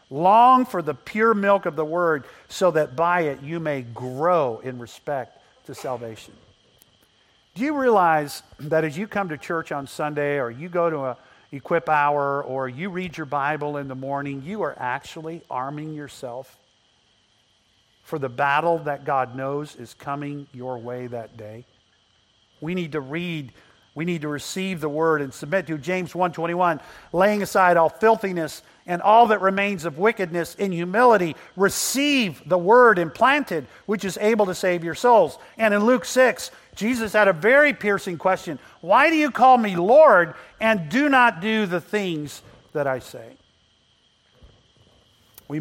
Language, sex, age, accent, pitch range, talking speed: English, male, 50-69, American, 130-190 Hz, 165 wpm